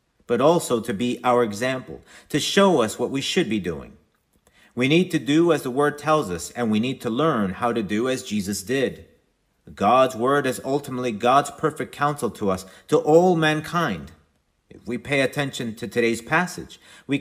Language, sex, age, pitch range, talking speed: English, male, 40-59, 120-160 Hz, 190 wpm